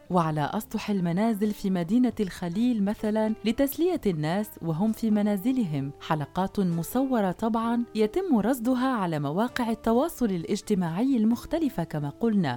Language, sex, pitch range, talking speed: Arabic, female, 185-240 Hz, 115 wpm